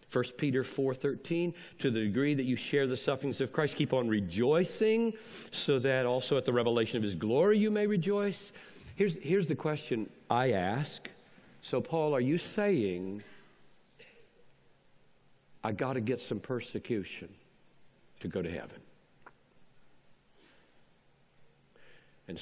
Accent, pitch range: American, 115-170 Hz